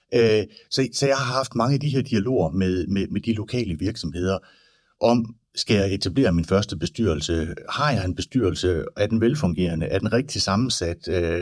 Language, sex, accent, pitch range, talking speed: Danish, male, native, 90-120 Hz, 175 wpm